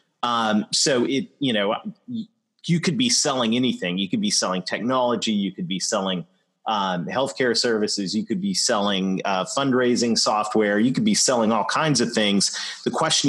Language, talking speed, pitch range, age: English, 175 wpm, 100-130 Hz, 30-49